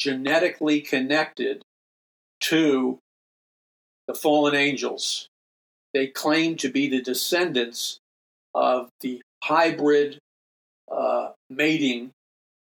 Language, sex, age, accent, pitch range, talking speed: English, male, 50-69, American, 125-145 Hz, 80 wpm